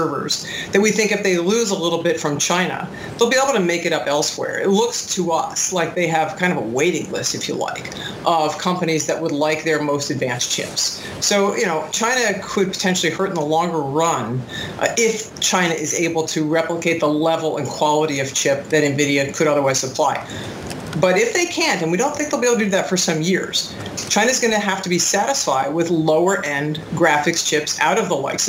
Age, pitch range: 40-59, 155-185 Hz